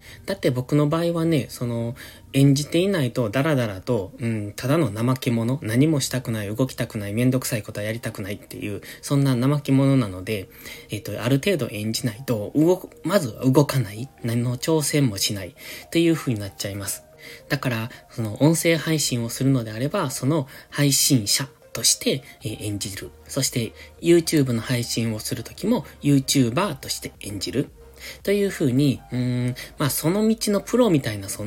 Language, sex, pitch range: Japanese, male, 110-145 Hz